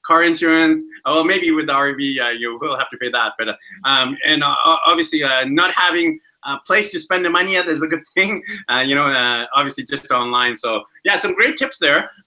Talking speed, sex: 235 wpm, male